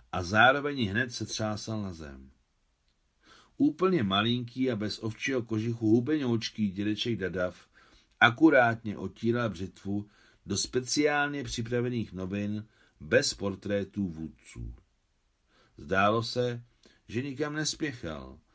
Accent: native